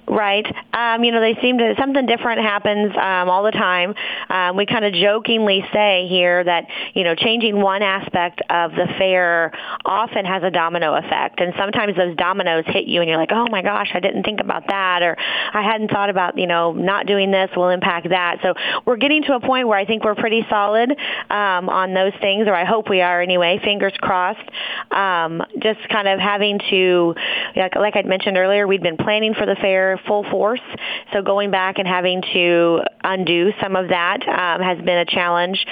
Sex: female